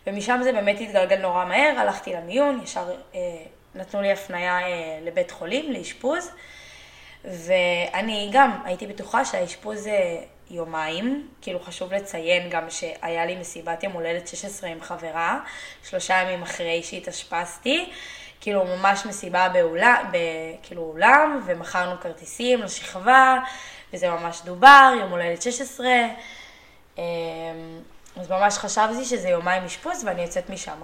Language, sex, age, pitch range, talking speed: Hebrew, female, 20-39, 175-245 Hz, 130 wpm